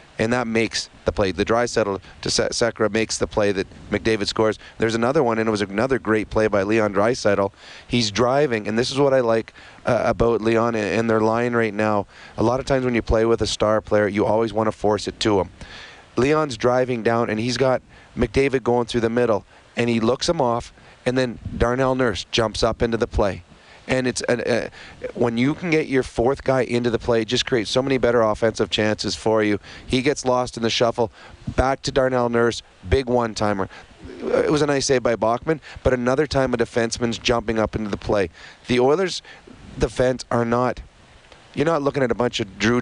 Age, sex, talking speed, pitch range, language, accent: 30-49, male, 215 wpm, 110-125 Hz, English, American